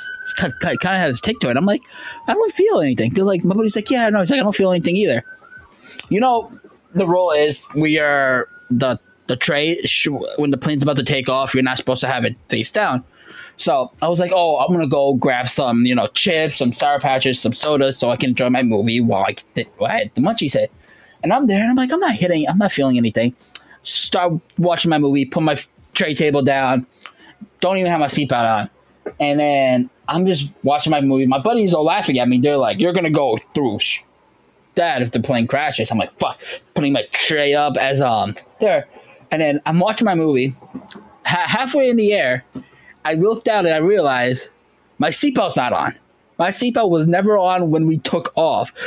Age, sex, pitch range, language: 10-29, male, 135-200 Hz, English